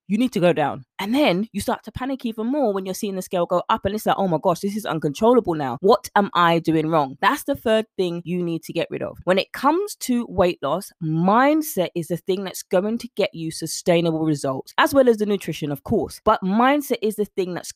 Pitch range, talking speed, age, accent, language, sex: 165-225 Hz, 255 wpm, 20-39, British, English, female